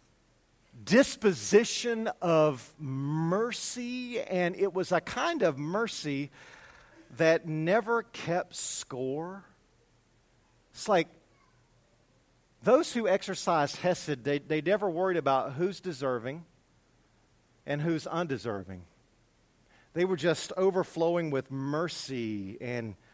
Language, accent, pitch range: English, American, 150-210 Hz